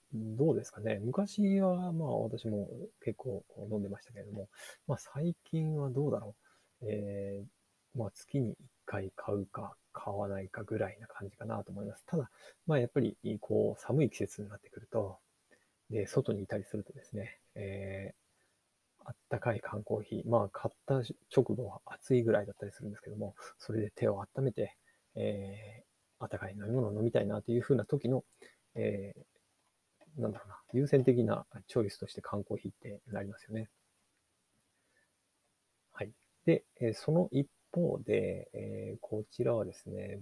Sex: male